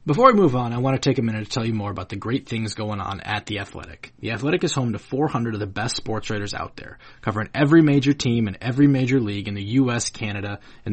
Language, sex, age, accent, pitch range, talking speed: English, male, 20-39, American, 105-130 Hz, 270 wpm